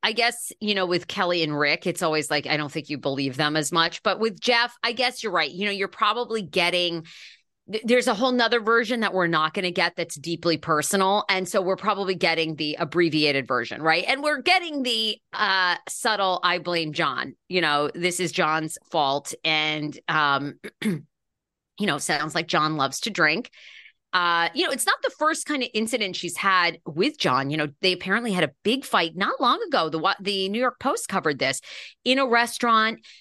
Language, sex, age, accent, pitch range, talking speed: English, female, 30-49, American, 160-220 Hz, 205 wpm